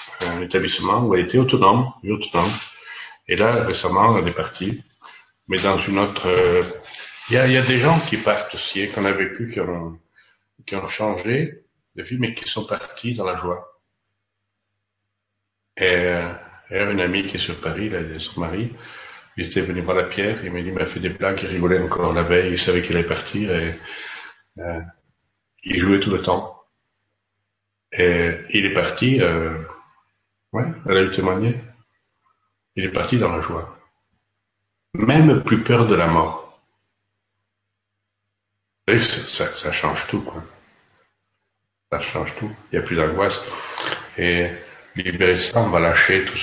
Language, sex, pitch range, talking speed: French, male, 90-115 Hz, 165 wpm